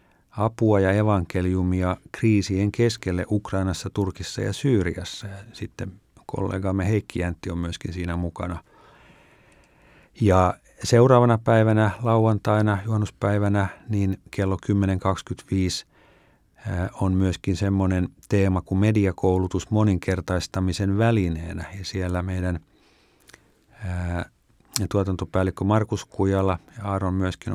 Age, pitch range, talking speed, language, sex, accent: 50-69, 90-110 Hz, 90 wpm, Finnish, male, native